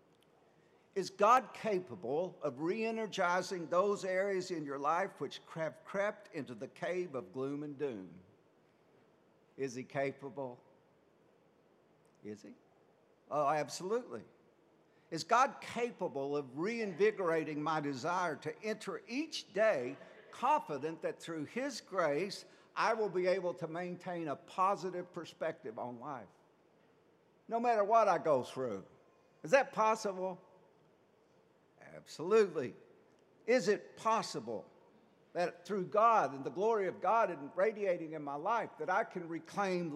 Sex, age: male, 60-79